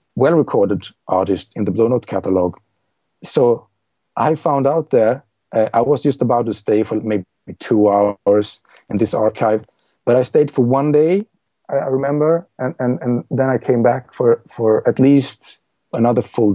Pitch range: 115-145 Hz